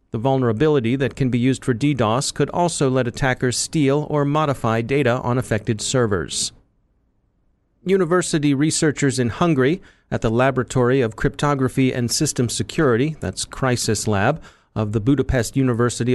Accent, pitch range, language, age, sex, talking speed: American, 120-150 Hz, English, 40-59, male, 140 wpm